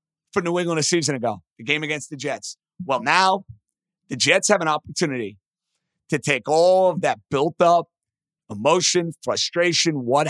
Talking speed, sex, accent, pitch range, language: 155 wpm, male, American, 145-175 Hz, English